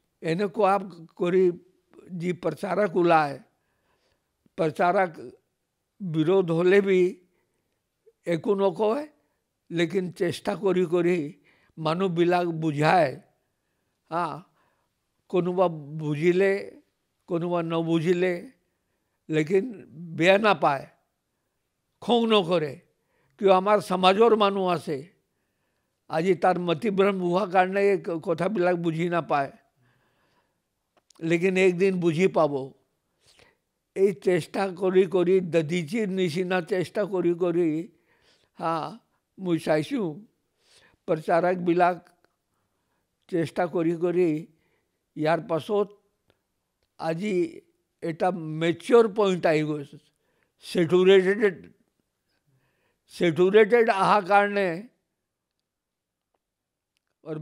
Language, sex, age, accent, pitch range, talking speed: English, male, 50-69, Indian, 170-195 Hz, 70 wpm